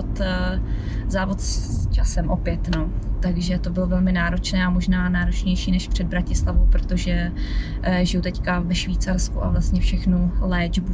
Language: Czech